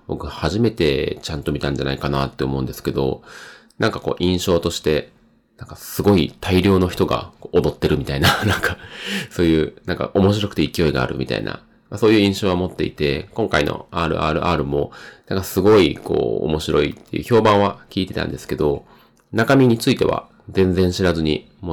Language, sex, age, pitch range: Japanese, male, 30-49, 75-95 Hz